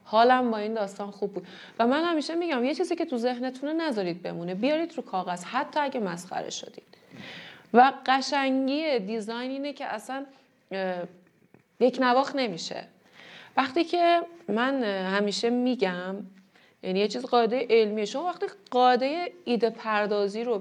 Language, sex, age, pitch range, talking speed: Persian, female, 30-49, 200-280 Hz, 145 wpm